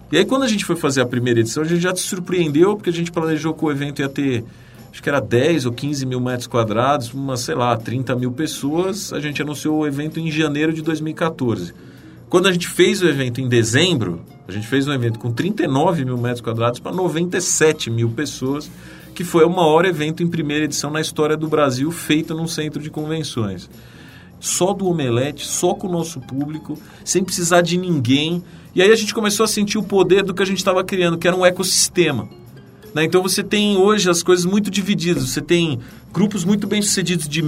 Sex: male